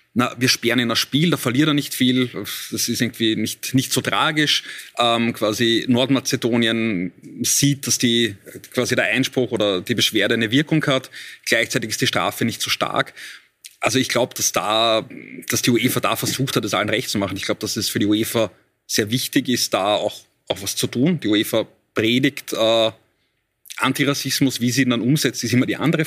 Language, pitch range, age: German, 110-130 Hz, 30-49